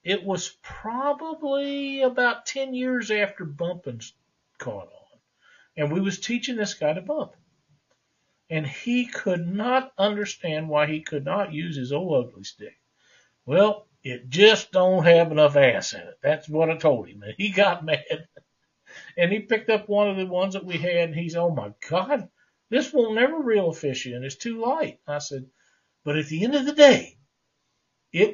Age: 60-79